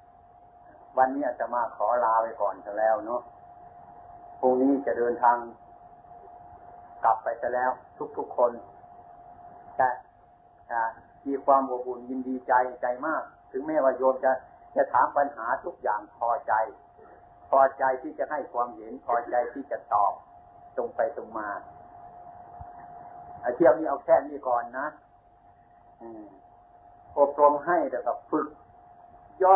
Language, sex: Thai, male